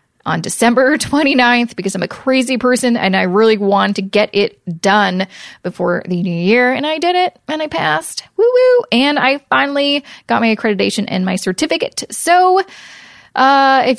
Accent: American